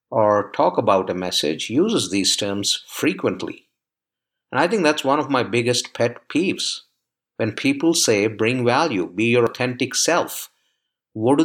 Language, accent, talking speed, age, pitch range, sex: English, Indian, 155 wpm, 50-69, 110-140 Hz, male